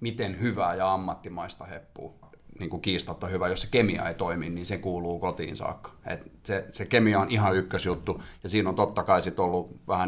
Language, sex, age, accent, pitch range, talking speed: Finnish, male, 30-49, native, 85-100 Hz, 195 wpm